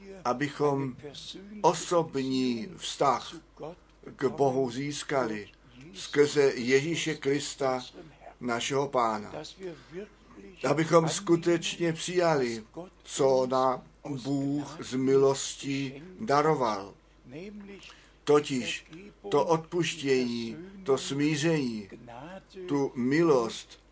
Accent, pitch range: native, 125-165 Hz